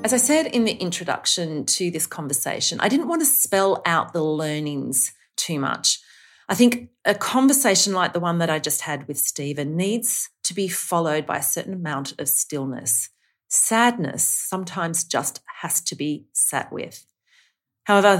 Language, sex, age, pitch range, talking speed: English, female, 40-59, 145-200 Hz, 170 wpm